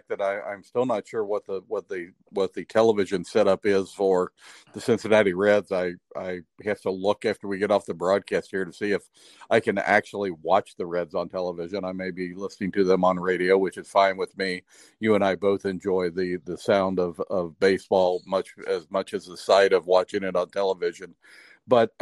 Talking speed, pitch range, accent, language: 215 wpm, 95-120 Hz, American, English